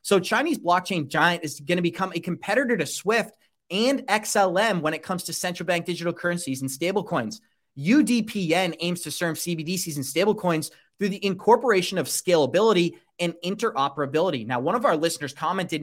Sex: male